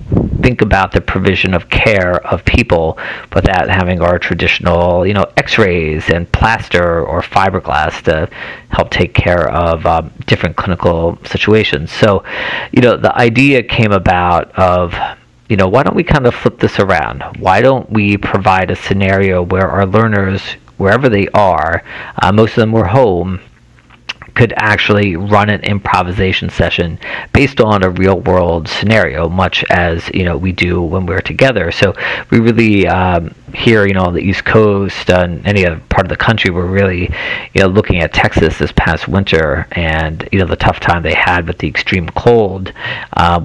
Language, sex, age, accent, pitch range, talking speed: English, male, 40-59, American, 85-100 Hz, 175 wpm